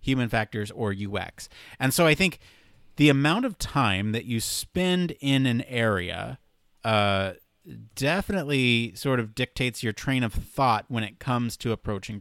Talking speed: 155 wpm